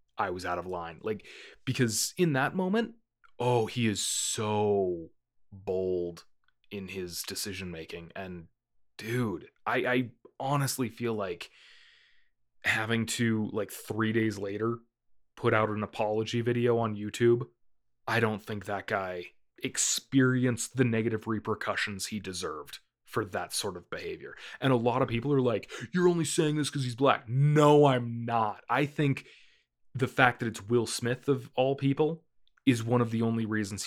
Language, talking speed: English, 160 wpm